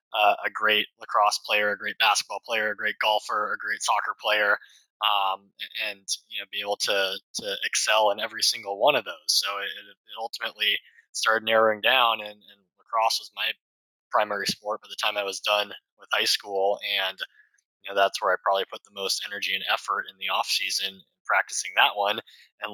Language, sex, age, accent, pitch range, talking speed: English, male, 20-39, American, 105-135 Hz, 200 wpm